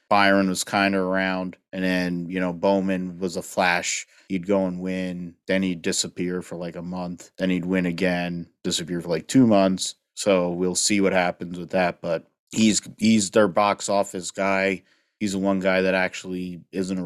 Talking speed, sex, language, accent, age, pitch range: 195 wpm, male, English, American, 30-49, 90-100 Hz